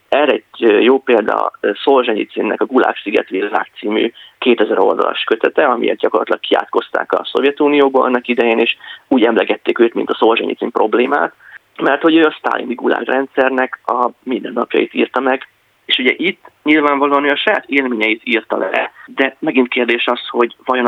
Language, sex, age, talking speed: Hungarian, male, 30-49, 155 wpm